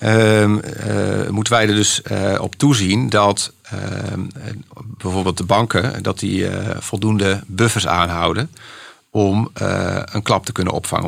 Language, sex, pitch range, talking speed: Dutch, male, 90-115 Hz, 145 wpm